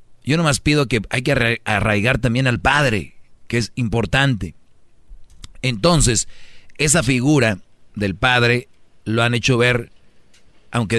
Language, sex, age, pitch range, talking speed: Spanish, male, 40-59, 115-140 Hz, 125 wpm